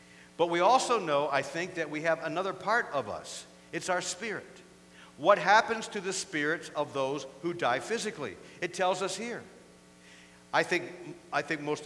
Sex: male